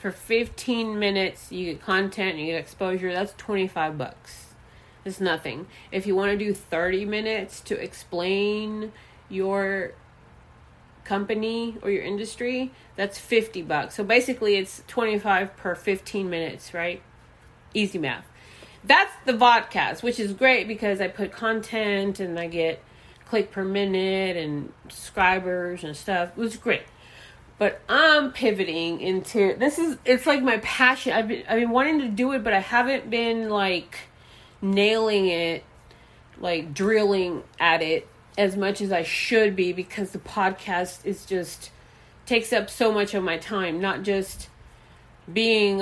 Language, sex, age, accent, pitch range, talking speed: English, female, 30-49, American, 180-225 Hz, 150 wpm